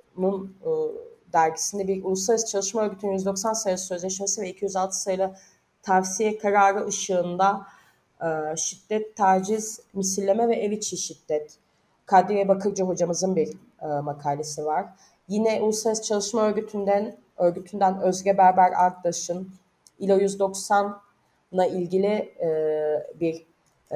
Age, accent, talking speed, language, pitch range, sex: 30-49, native, 100 wpm, Turkish, 170-220 Hz, female